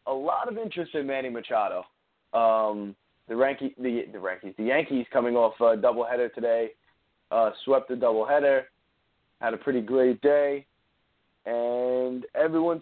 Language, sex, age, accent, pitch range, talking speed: English, male, 20-39, American, 120-145 Hz, 120 wpm